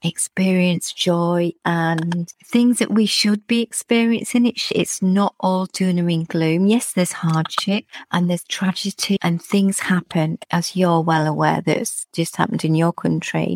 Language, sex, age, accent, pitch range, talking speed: English, female, 40-59, British, 160-185 Hz, 155 wpm